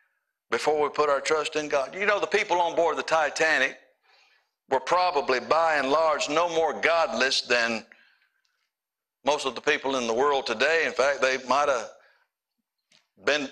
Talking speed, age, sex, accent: 170 wpm, 60-79, male, American